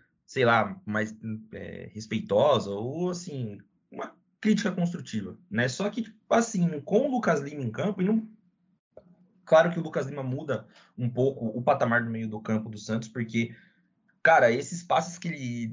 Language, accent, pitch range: Portuguese, Brazilian, 120-175 Hz